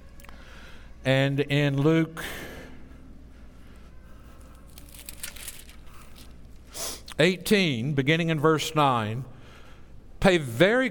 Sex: male